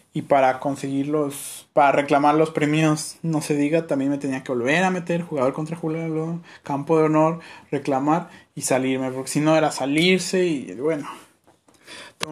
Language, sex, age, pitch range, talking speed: Spanish, male, 20-39, 140-170 Hz, 170 wpm